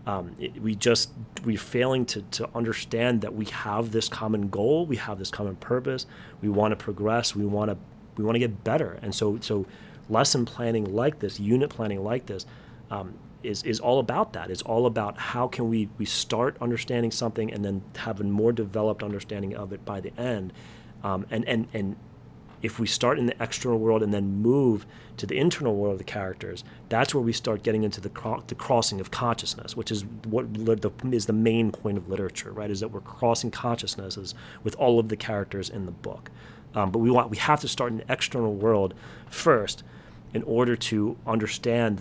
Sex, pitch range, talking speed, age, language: male, 105-120 Hz, 205 wpm, 30-49, English